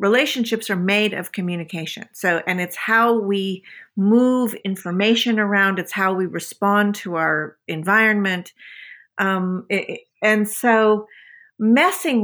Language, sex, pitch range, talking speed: English, female, 185-235 Hz, 125 wpm